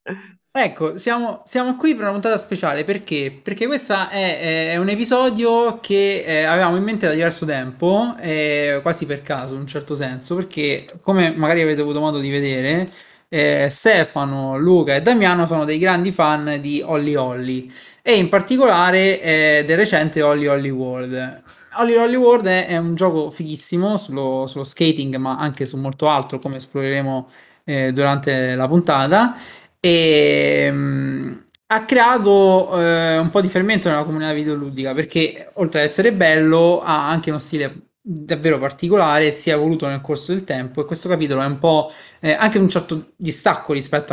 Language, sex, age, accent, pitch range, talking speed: Italian, male, 20-39, native, 140-180 Hz, 165 wpm